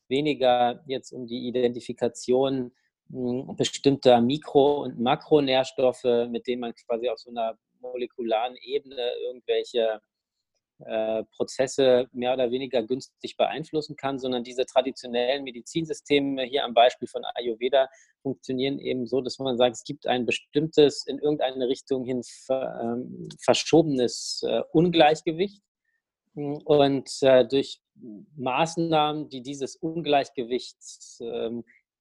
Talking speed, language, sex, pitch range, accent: 110 wpm, German, male, 125-145 Hz, German